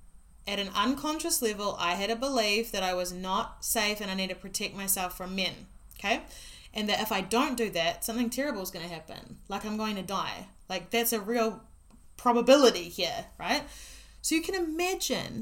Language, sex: English, female